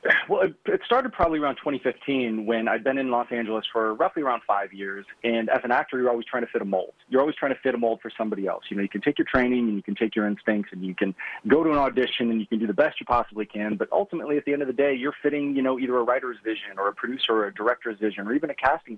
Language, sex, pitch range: English, male, 105-140 Hz